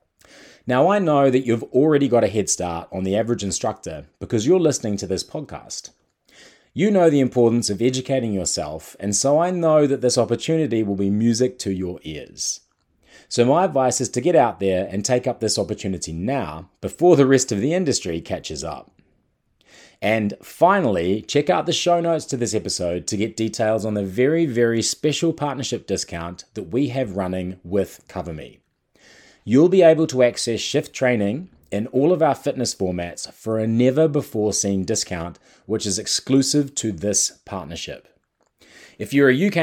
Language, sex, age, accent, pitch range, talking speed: English, male, 30-49, Australian, 100-145 Hz, 175 wpm